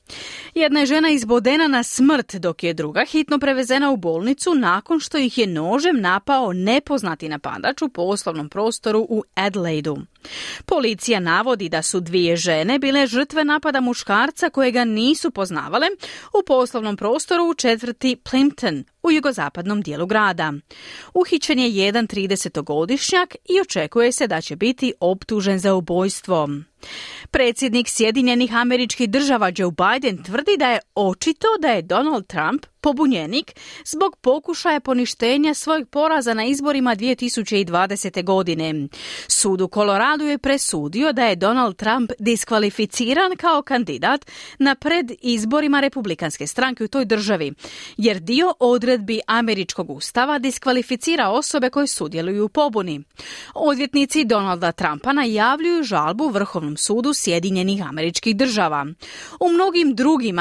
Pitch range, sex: 195-285 Hz, female